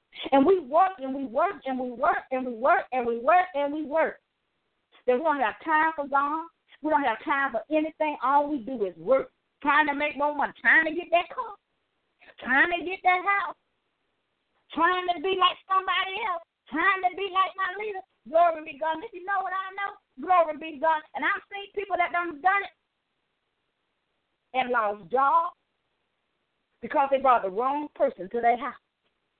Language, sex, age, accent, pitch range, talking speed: English, female, 40-59, American, 270-365 Hz, 195 wpm